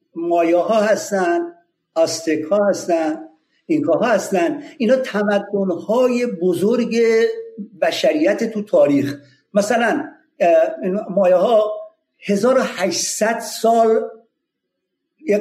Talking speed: 80 wpm